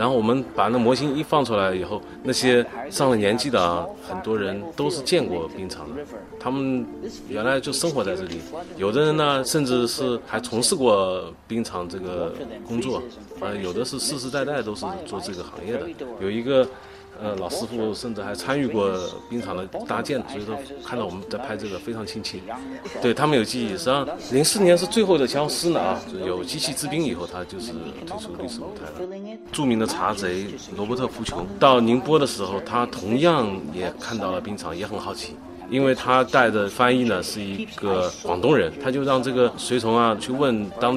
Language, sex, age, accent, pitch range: Chinese, male, 30-49, native, 105-135 Hz